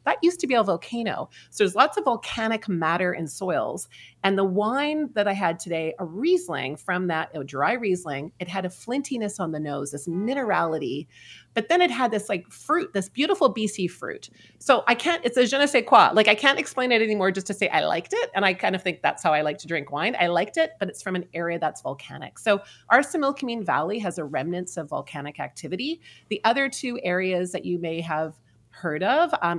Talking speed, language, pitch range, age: 225 wpm, English, 155-225 Hz, 30-49